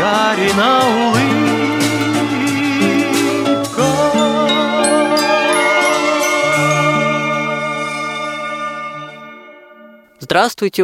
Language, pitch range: Russian, 150-215 Hz